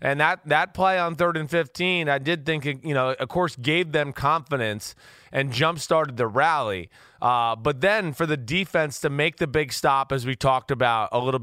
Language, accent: English, American